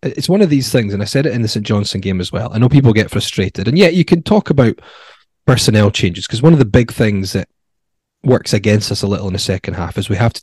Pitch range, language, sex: 100-125 Hz, English, male